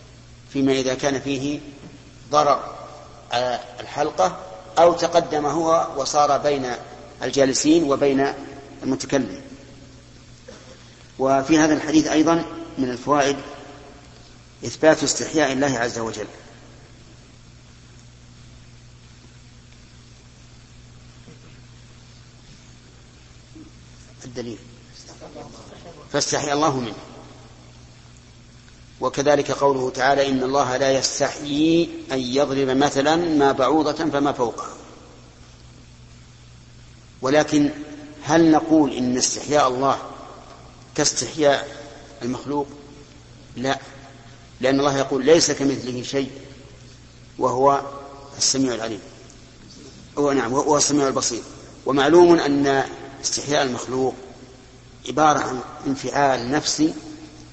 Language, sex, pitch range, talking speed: Arabic, male, 125-145 Hz, 75 wpm